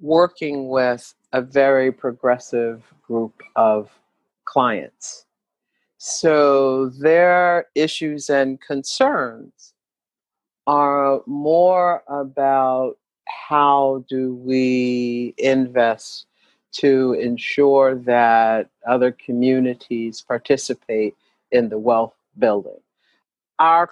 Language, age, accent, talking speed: English, 50-69, American, 80 wpm